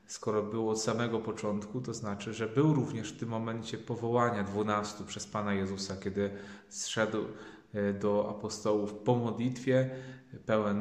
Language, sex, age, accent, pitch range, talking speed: Polish, male, 30-49, native, 100-120 Hz, 140 wpm